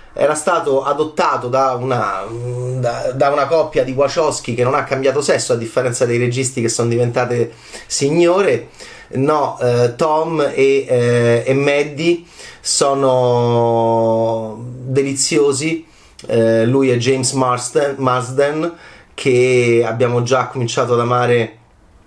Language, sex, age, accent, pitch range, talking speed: Italian, male, 30-49, native, 120-155 Hz, 120 wpm